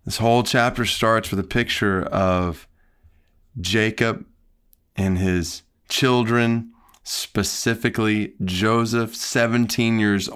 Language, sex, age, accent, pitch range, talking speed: English, male, 30-49, American, 90-115 Hz, 95 wpm